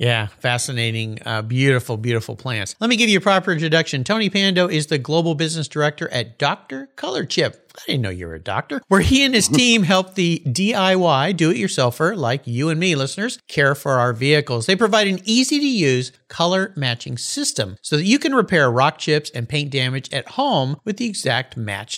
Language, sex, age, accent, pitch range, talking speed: English, male, 50-69, American, 135-200 Hz, 195 wpm